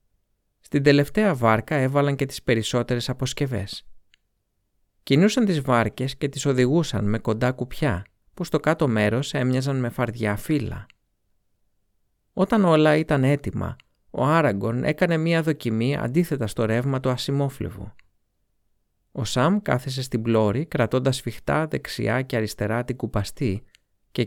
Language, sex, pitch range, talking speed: Greek, male, 105-140 Hz, 130 wpm